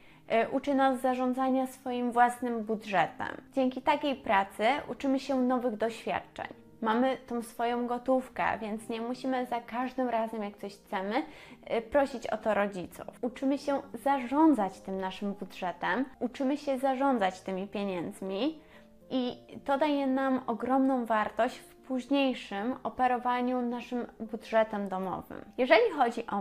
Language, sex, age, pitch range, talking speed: Polish, female, 20-39, 215-270 Hz, 125 wpm